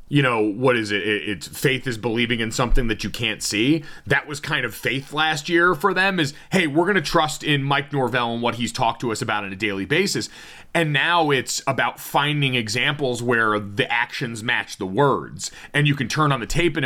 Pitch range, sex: 120-155 Hz, male